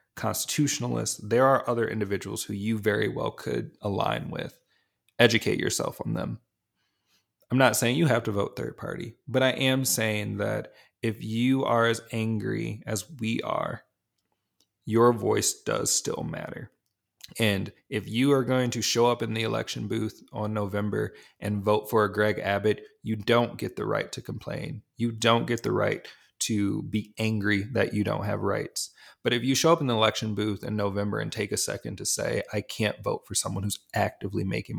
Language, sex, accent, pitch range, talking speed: English, male, American, 105-130 Hz, 185 wpm